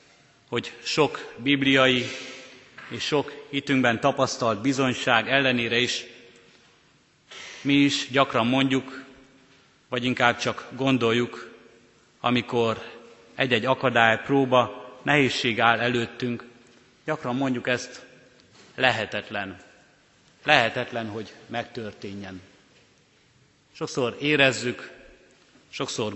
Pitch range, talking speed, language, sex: 115-135 Hz, 80 wpm, Hungarian, male